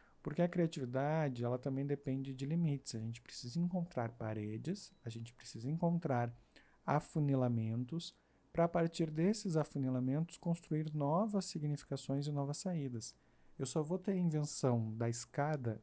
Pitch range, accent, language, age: 120-155 Hz, Brazilian, Portuguese, 50-69